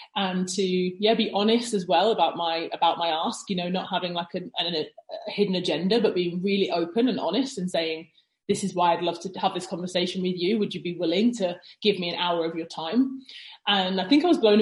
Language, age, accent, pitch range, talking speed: English, 30-49, British, 175-210 Hz, 240 wpm